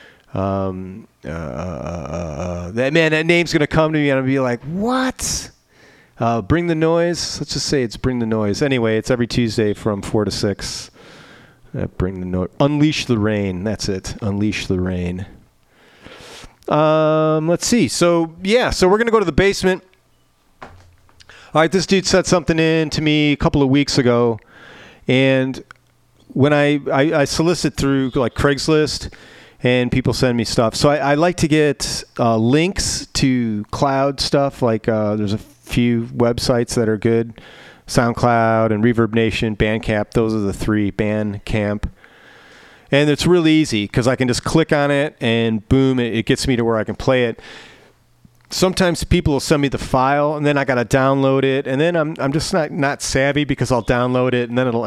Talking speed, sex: 185 wpm, male